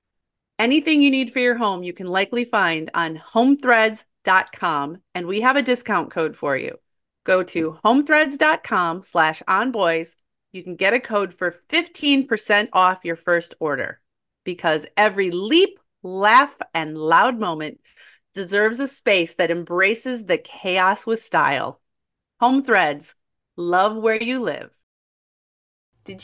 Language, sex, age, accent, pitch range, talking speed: English, female, 30-49, American, 175-235 Hz, 135 wpm